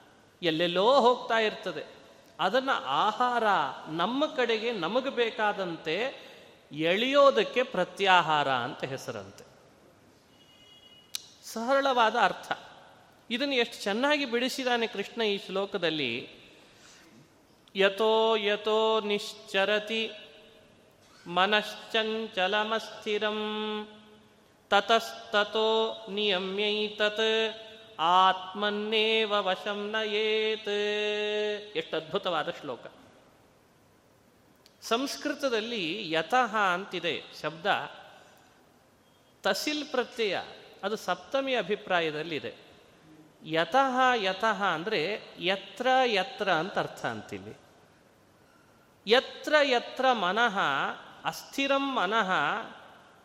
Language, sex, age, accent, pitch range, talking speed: Kannada, male, 30-49, native, 195-235 Hz, 65 wpm